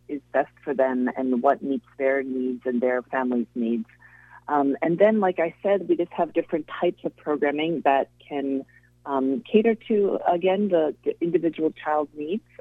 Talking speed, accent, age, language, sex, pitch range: 175 wpm, American, 40-59, English, female, 130-170 Hz